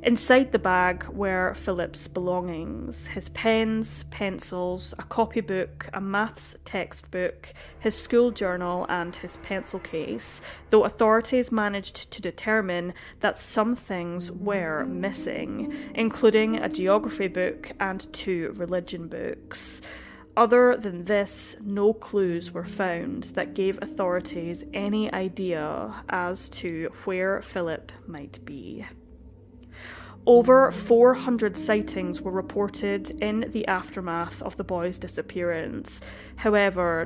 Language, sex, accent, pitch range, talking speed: English, female, British, 175-220 Hz, 115 wpm